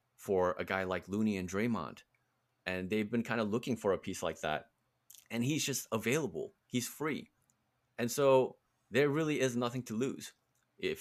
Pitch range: 90-120 Hz